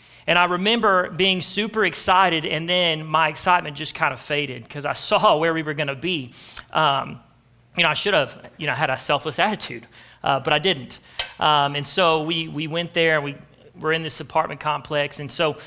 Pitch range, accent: 150-190 Hz, American